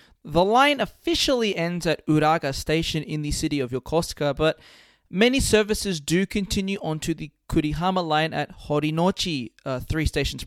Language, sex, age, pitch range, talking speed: English, male, 20-39, 145-185 Hz, 150 wpm